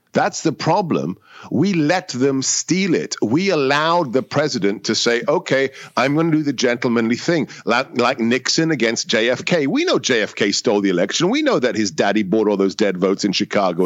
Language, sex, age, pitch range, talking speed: English, male, 50-69, 120-160 Hz, 195 wpm